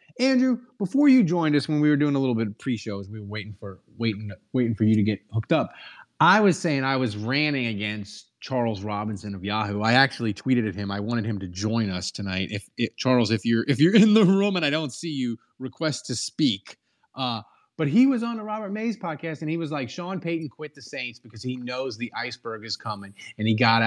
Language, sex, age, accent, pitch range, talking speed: English, male, 30-49, American, 115-180 Hz, 240 wpm